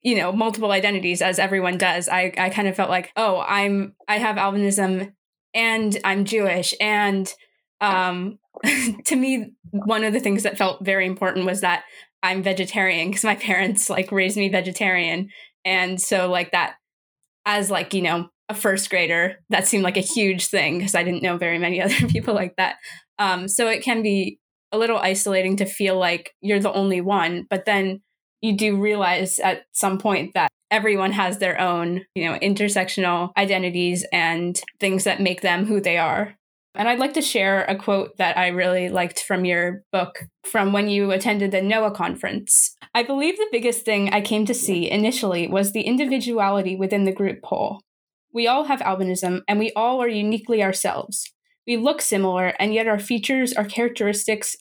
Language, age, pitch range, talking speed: English, 20-39, 185-210 Hz, 185 wpm